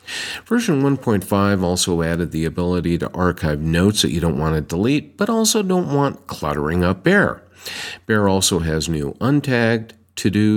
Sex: male